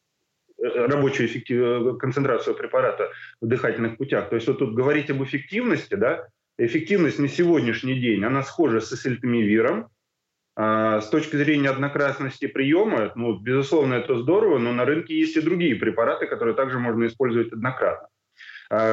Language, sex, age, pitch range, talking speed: Russian, male, 20-39, 125-170 Hz, 145 wpm